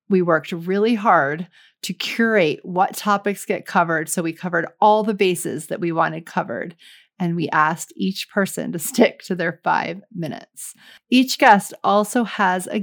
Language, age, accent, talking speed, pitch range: English, 30-49, American, 170 wpm, 175-215 Hz